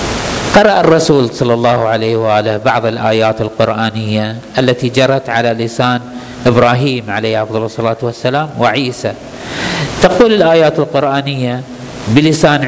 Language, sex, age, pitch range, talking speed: Arabic, male, 50-69, 125-190 Hz, 110 wpm